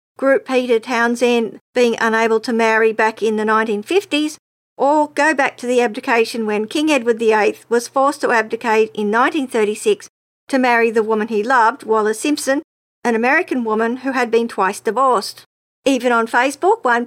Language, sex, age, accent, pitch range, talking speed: English, female, 50-69, Australian, 225-270 Hz, 165 wpm